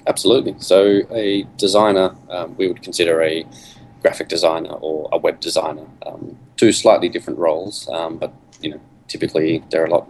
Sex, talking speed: male, 170 wpm